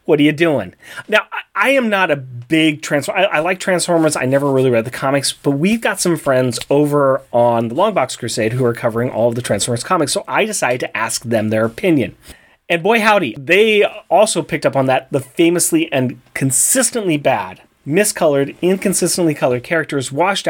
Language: English